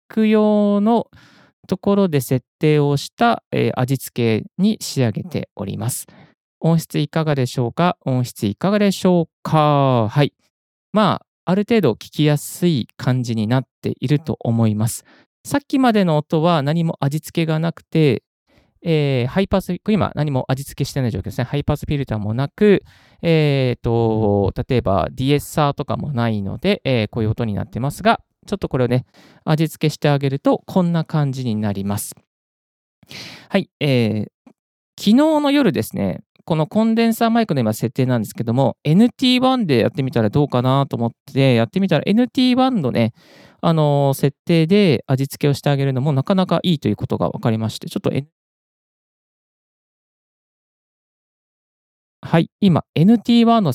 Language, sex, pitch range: Japanese, male, 125-180 Hz